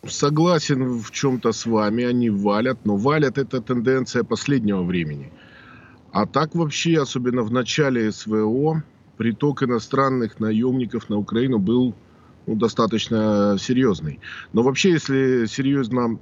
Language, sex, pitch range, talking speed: Russian, male, 105-130 Hz, 120 wpm